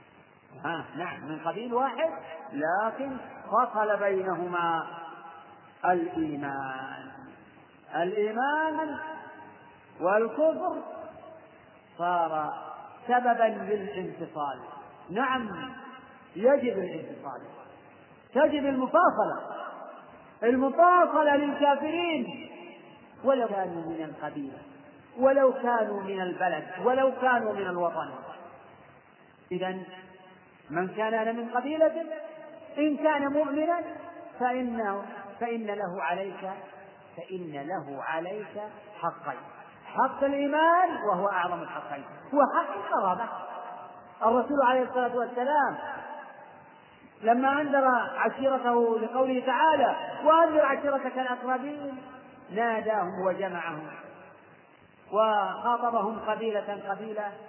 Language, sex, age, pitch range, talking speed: Arabic, male, 40-59, 190-270 Hz, 75 wpm